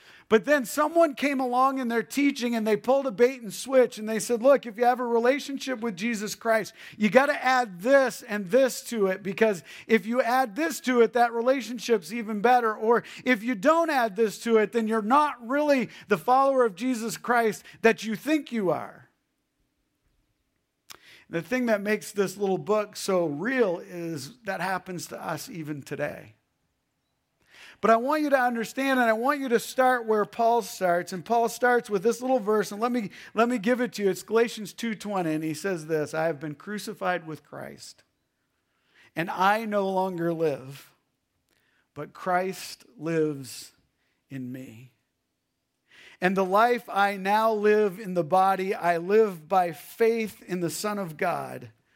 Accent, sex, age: American, male, 40-59